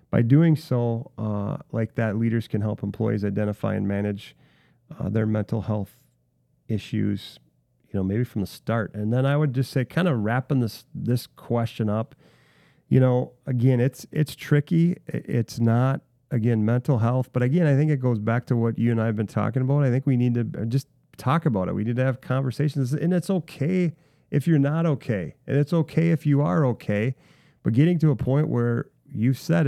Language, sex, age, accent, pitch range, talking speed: English, male, 40-59, American, 110-135 Hz, 200 wpm